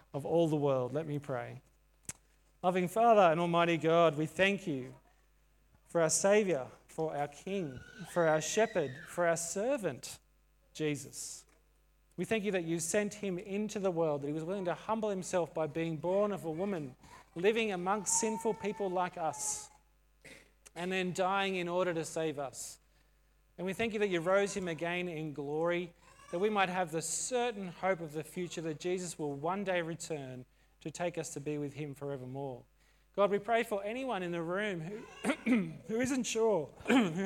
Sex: male